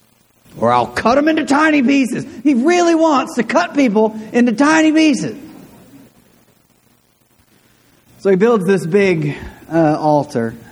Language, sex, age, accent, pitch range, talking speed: English, male, 40-59, American, 110-155 Hz, 130 wpm